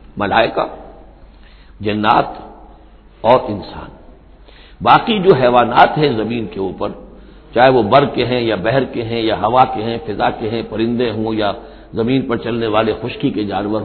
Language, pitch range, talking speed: Urdu, 110-165 Hz, 160 wpm